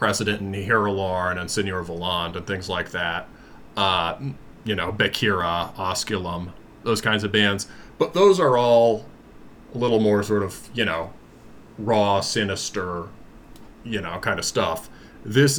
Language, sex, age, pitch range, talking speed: English, male, 30-49, 95-115 Hz, 145 wpm